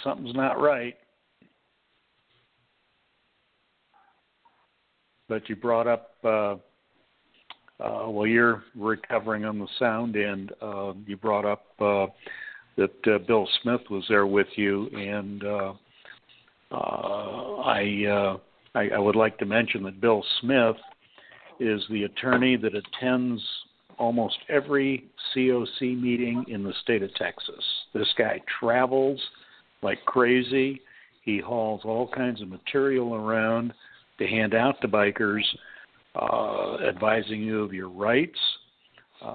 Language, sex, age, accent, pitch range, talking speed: English, male, 60-79, American, 105-125 Hz, 125 wpm